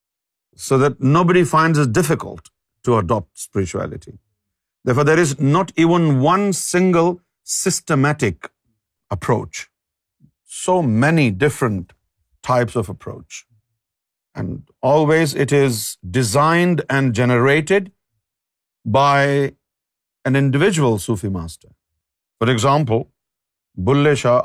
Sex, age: male, 50-69